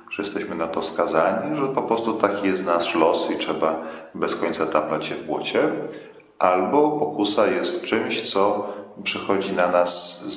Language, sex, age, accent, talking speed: Polish, male, 40-59, native, 170 wpm